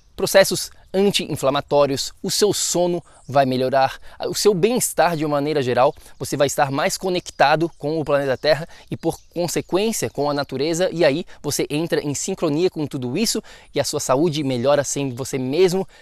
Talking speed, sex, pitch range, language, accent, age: 170 wpm, male, 140-180 Hz, Portuguese, Brazilian, 20-39